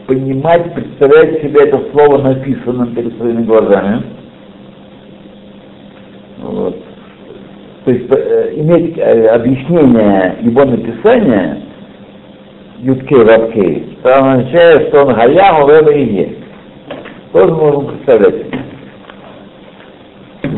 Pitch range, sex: 125-195 Hz, male